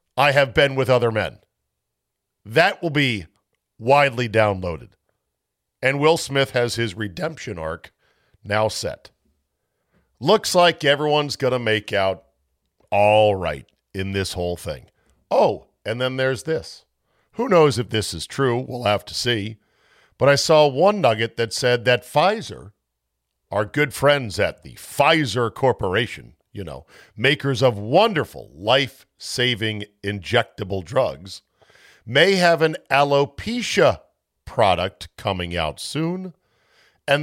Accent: American